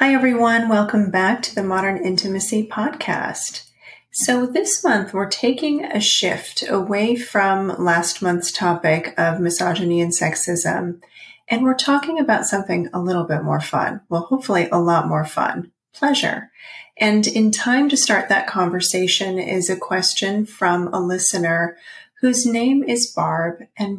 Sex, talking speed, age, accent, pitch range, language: female, 150 wpm, 30-49, American, 170-220 Hz, English